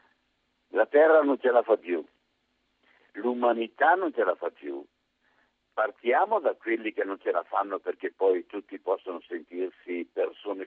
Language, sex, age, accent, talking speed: Italian, male, 60-79, native, 150 wpm